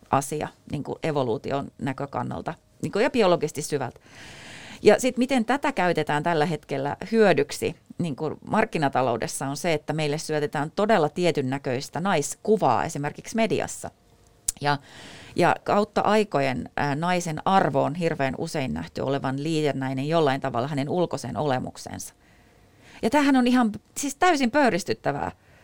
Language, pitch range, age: Finnish, 140-195 Hz, 30-49